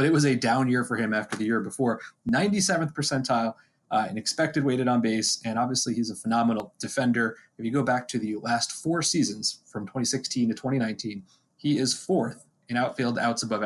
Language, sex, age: English, male, 20-39